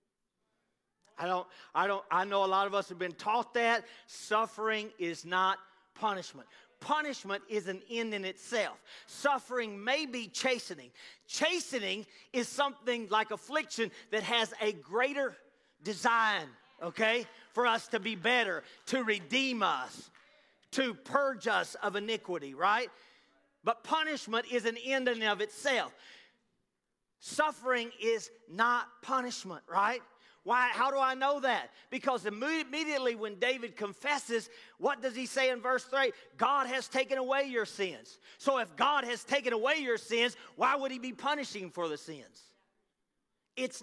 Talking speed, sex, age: 150 wpm, male, 40-59